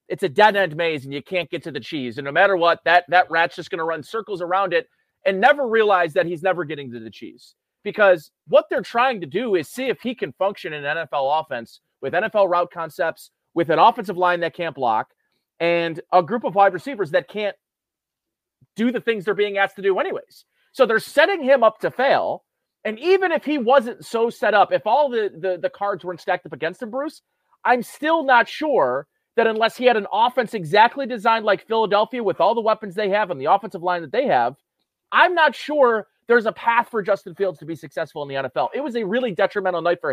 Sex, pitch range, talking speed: male, 175-235 Hz, 230 wpm